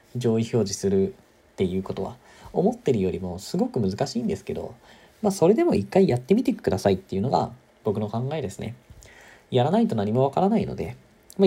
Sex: male